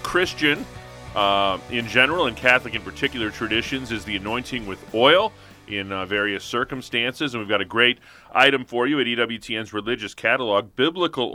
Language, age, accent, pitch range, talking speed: English, 30-49, American, 100-125 Hz, 165 wpm